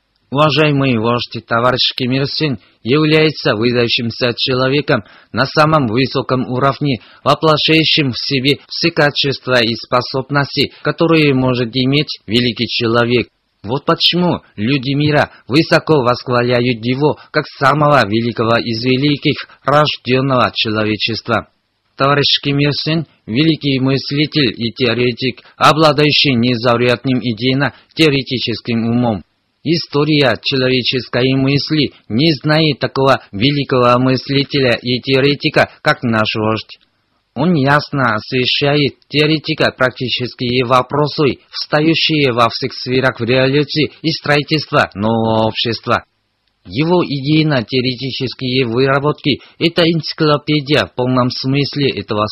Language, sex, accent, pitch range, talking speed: Russian, male, native, 120-145 Hz, 95 wpm